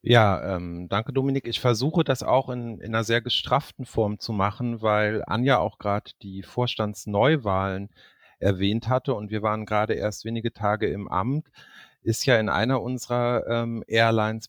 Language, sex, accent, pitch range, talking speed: German, male, German, 100-115 Hz, 165 wpm